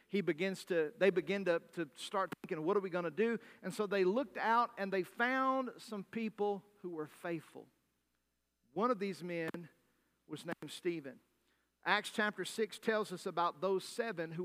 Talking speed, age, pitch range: 185 wpm, 50-69, 165-210 Hz